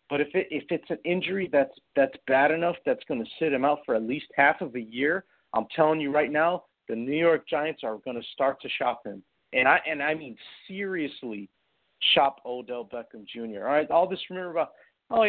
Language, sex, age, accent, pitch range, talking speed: English, male, 40-59, American, 125-180 Hz, 240 wpm